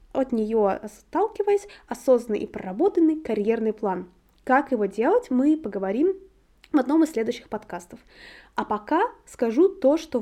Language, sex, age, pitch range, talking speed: Russian, female, 20-39, 220-295 Hz, 135 wpm